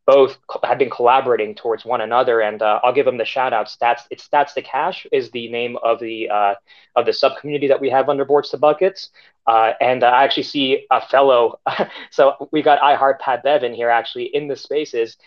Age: 20-39